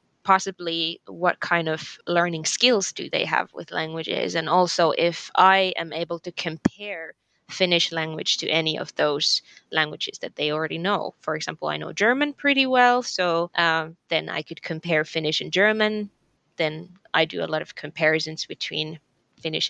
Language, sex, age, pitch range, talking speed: English, female, 20-39, 165-195 Hz, 170 wpm